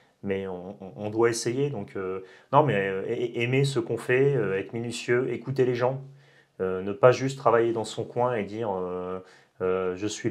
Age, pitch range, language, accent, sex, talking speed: 30-49, 95-125 Hz, French, French, male, 200 wpm